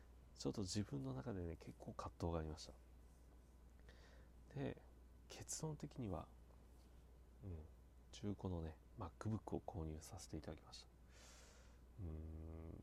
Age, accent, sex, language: 40-59, native, male, Japanese